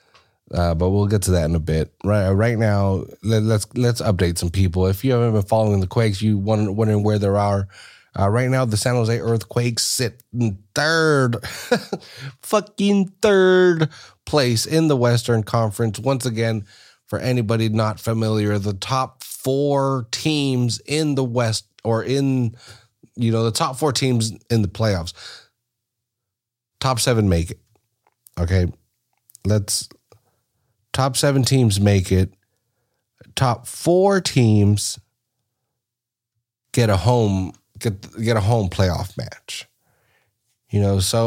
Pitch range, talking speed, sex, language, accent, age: 105-130 Hz, 140 wpm, male, English, American, 30-49